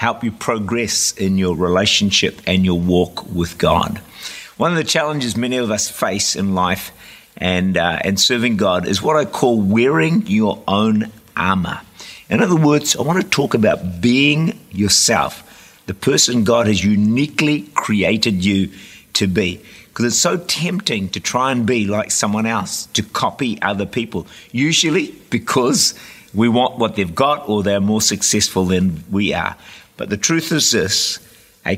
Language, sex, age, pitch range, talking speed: English, male, 50-69, 100-125 Hz, 165 wpm